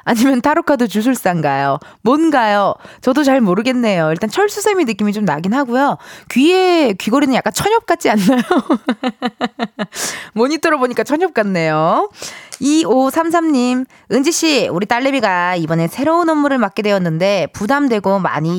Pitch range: 210-320 Hz